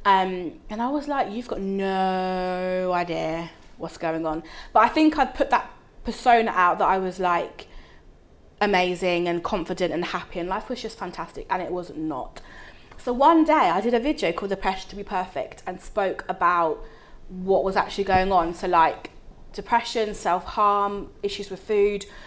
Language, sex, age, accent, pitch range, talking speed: English, female, 20-39, British, 180-230 Hz, 175 wpm